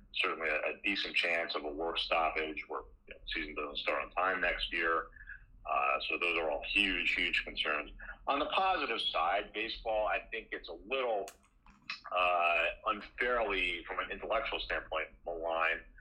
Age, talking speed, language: 40-59, 155 wpm, English